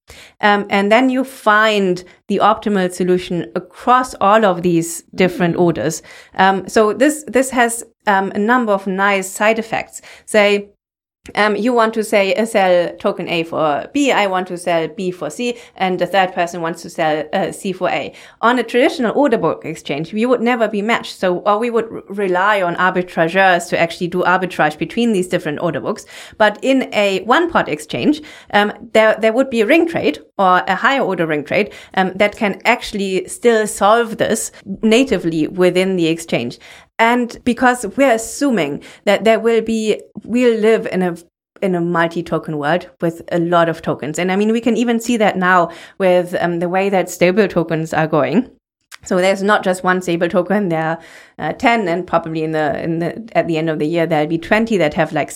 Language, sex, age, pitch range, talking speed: English, female, 30-49, 175-225 Hz, 200 wpm